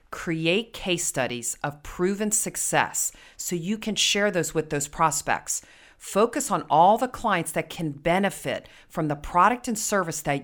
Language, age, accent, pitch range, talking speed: English, 40-59, American, 140-180 Hz, 160 wpm